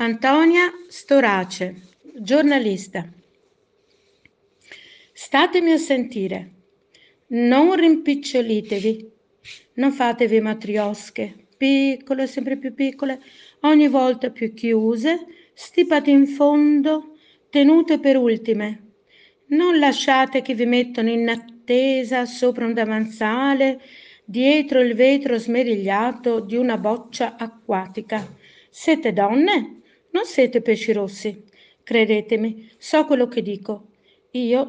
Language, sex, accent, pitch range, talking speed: Italian, female, native, 225-290 Hz, 95 wpm